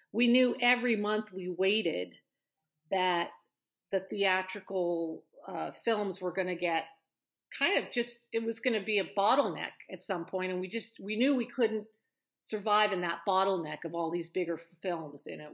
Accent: American